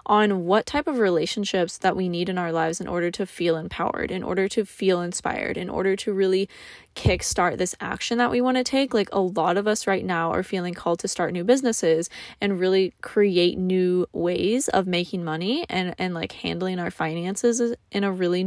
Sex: female